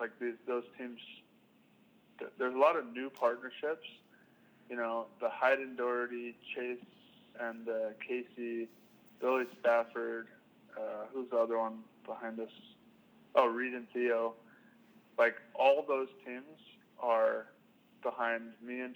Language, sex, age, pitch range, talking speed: English, male, 20-39, 115-125 Hz, 130 wpm